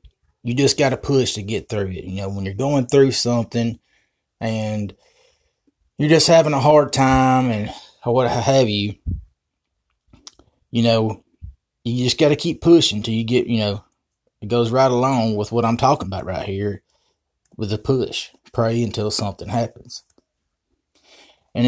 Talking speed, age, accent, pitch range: 160 wpm, 20-39, American, 105-130 Hz